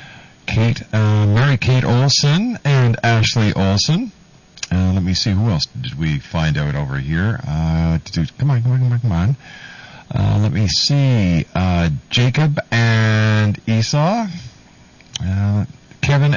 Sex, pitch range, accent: male, 100-145 Hz, American